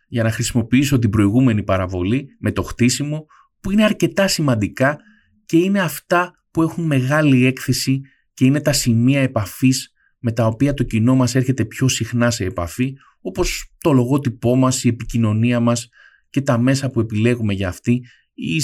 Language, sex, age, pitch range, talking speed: Greek, male, 20-39, 115-145 Hz, 165 wpm